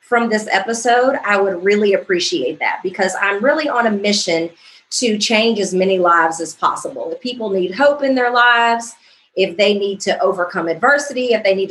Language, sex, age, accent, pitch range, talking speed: English, female, 30-49, American, 180-240 Hz, 190 wpm